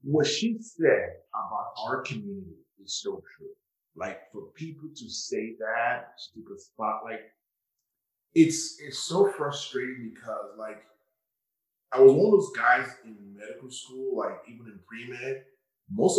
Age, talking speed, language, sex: 30-49, 140 wpm, English, male